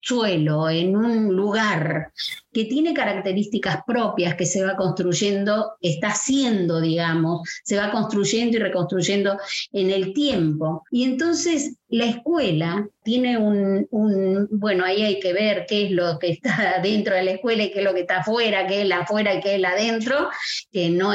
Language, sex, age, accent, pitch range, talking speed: Spanish, female, 20-39, Argentinian, 160-205 Hz, 175 wpm